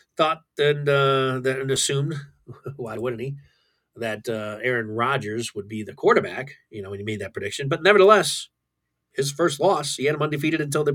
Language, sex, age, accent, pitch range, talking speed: English, male, 40-59, American, 105-155 Hz, 185 wpm